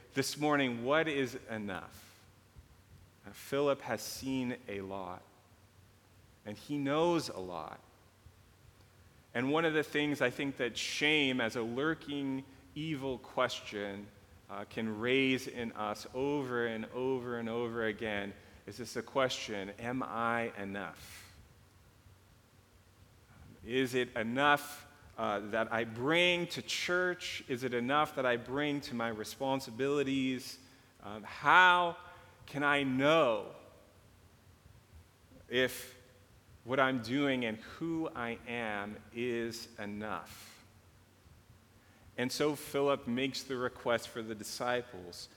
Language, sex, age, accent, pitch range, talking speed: English, male, 40-59, American, 100-135 Hz, 120 wpm